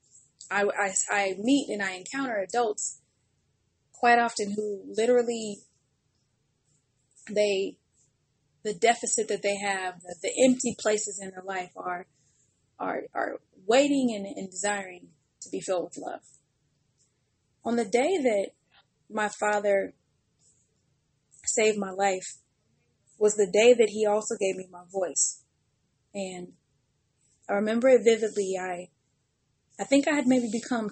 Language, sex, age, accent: English, female, 20-39, American